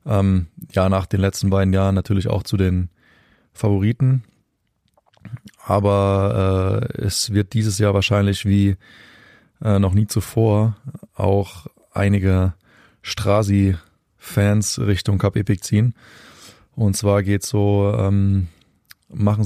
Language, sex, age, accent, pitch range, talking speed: German, male, 20-39, German, 95-110 Hz, 115 wpm